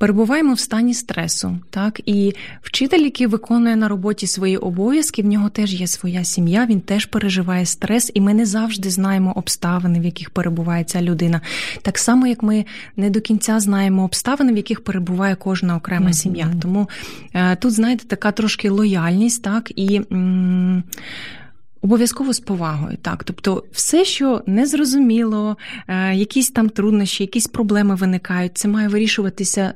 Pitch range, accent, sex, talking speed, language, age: 180-215 Hz, native, female, 150 wpm, Ukrainian, 20-39